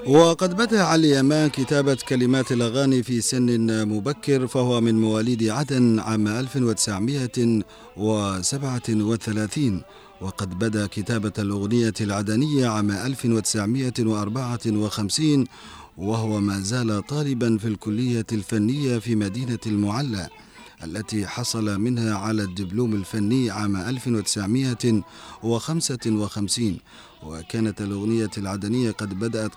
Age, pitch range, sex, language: 40-59, 105-130 Hz, male, Arabic